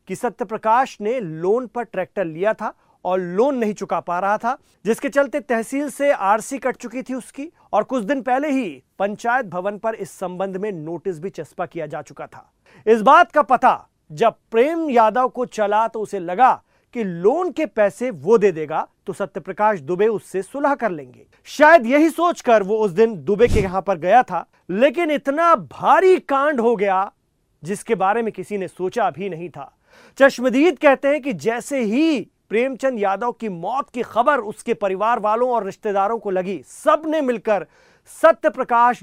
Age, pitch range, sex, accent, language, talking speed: 40-59, 195-270 Hz, male, native, Hindi, 160 wpm